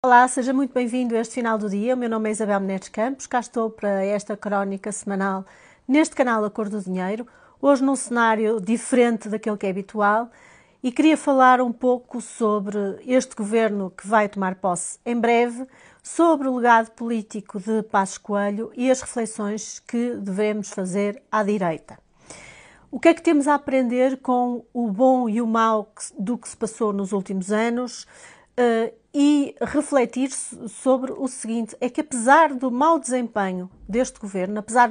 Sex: female